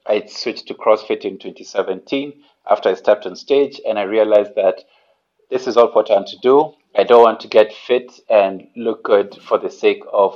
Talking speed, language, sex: 205 wpm, English, male